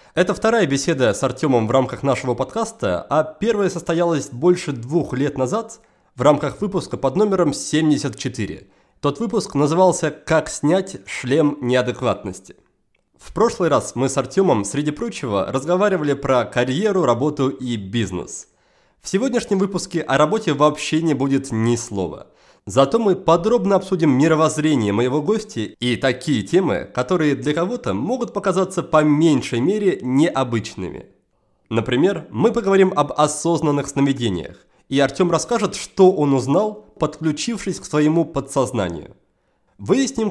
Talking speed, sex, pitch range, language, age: 130 wpm, male, 130-185 Hz, Russian, 30-49